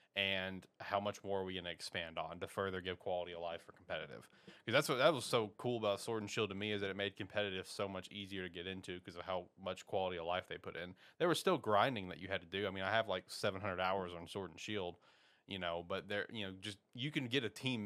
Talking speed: 280 wpm